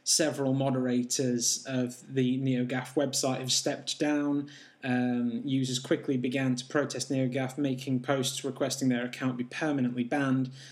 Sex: male